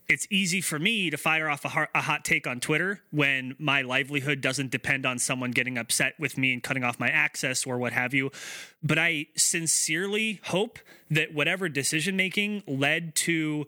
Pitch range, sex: 145-185 Hz, male